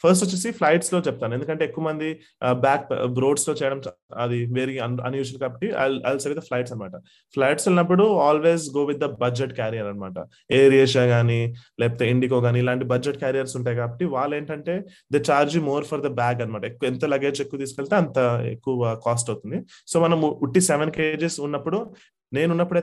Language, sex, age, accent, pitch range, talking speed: Telugu, male, 30-49, native, 125-155 Hz, 165 wpm